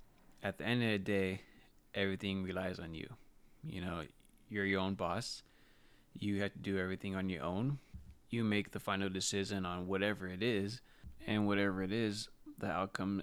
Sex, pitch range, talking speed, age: male, 95-105 Hz, 175 wpm, 20-39